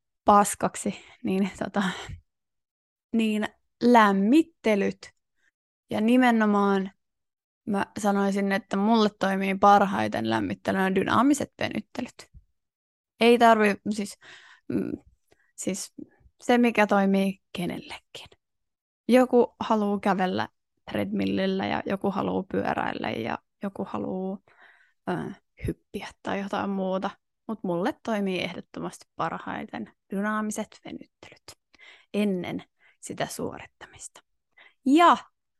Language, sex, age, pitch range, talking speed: Finnish, female, 20-39, 195-230 Hz, 85 wpm